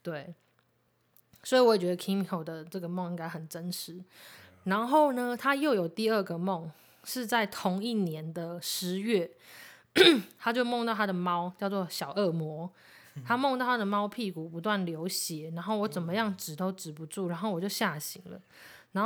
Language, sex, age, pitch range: Chinese, female, 20-39, 170-205 Hz